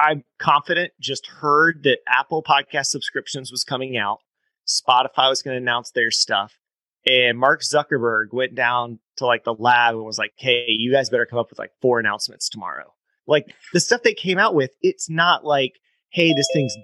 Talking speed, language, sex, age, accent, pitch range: 190 wpm, English, male, 30-49, American, 115-150 Hz